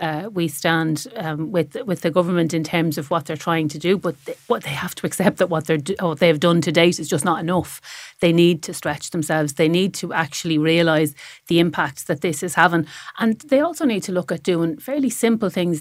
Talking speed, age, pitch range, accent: 240 wpm, 40-59, 160-185 Hz, Irish